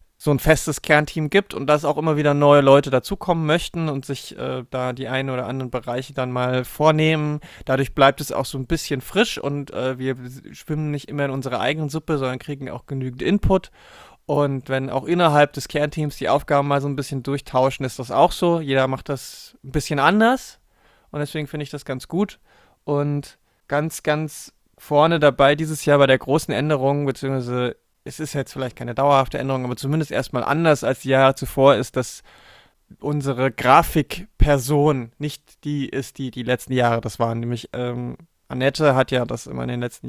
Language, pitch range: German, 130-150 Hz